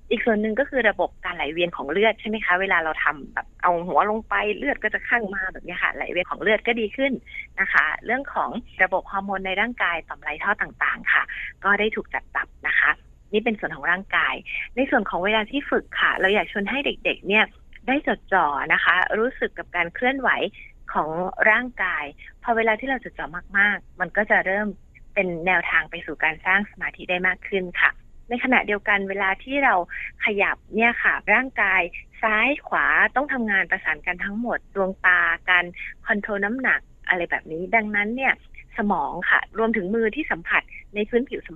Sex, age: female, 30-49